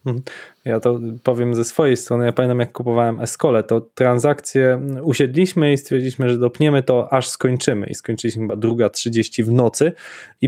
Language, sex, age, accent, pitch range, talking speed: Polish, male, 20-39, native, 120-145 Hz, 165 wpm